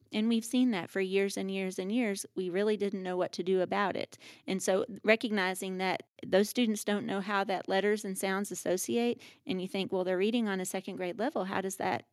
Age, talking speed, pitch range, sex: 40-59, 235 wpm, 185-210 Hz, female